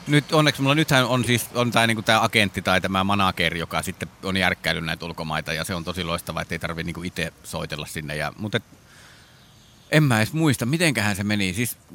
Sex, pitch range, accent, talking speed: male, 90-125 Hz, native, 215 wpm